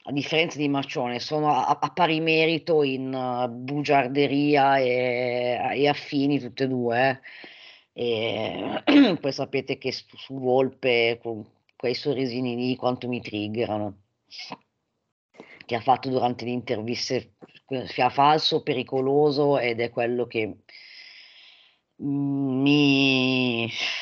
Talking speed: 110 wpm